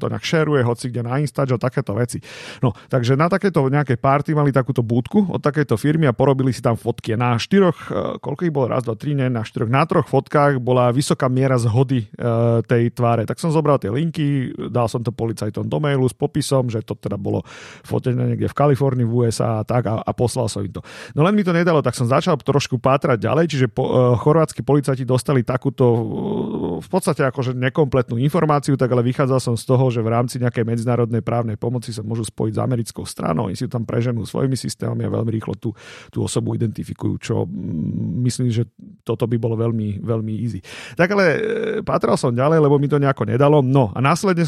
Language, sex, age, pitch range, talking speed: Slovak, male, 40-59, 115-145 Hz, 210 wpm